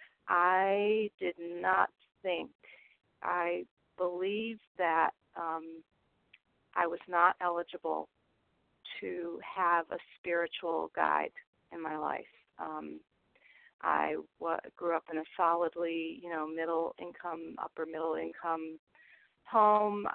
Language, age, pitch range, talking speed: English, 40-59, 160-180 Hz, 105 wpm